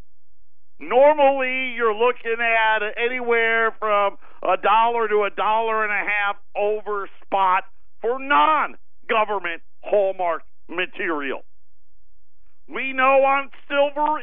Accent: American